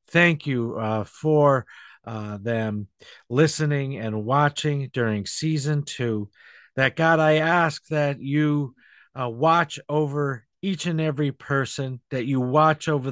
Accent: American